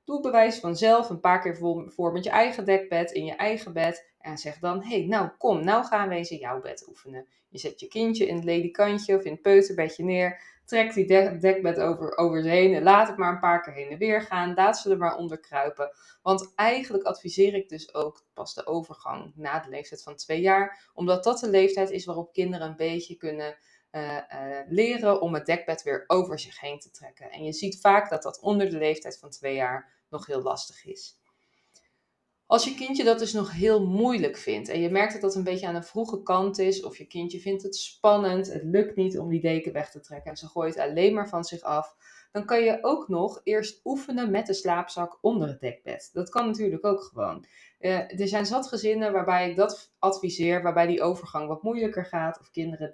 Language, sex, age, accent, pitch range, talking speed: Dutch, female, 20-39, Dutch, 165-205 Hz, 220 wpm